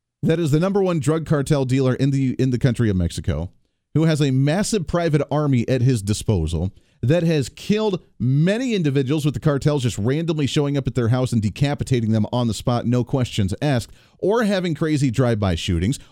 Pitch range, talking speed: 115-150 Hz, 195 wpm